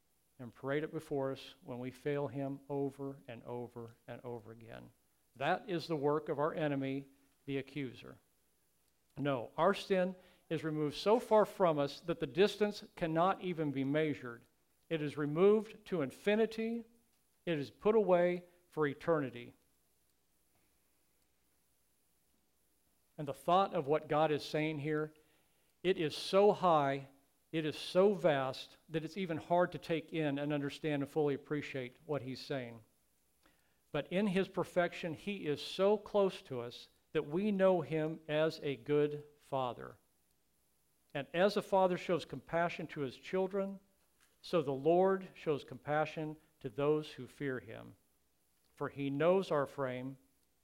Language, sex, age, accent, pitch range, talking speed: English, male, 50-69, American, 135-175 Hz, 150 wpm